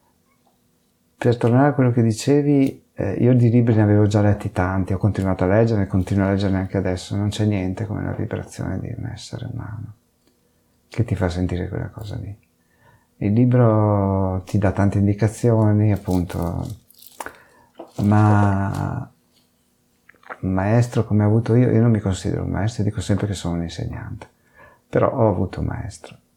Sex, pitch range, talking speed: male, 95-120 Hz, 160 wpm